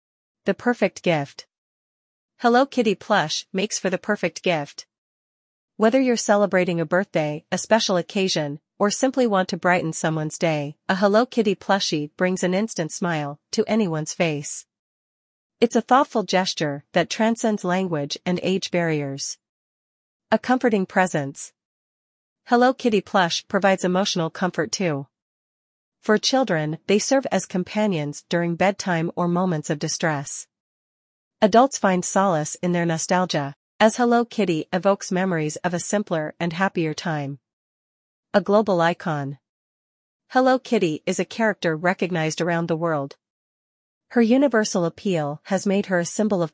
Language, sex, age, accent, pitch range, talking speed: English, female, 40-59, American, 160-205 Hz, 140 wpm